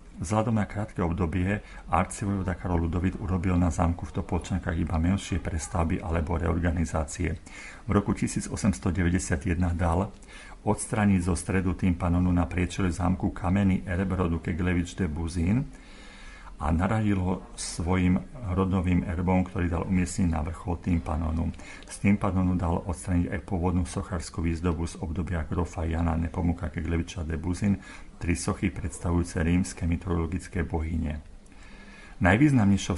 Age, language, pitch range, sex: 50-69, Slovak, 85-95 Hz, male